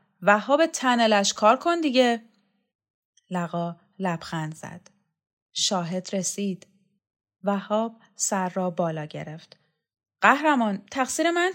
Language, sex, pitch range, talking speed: Persian, female, 170-225 Hz, 95 wpm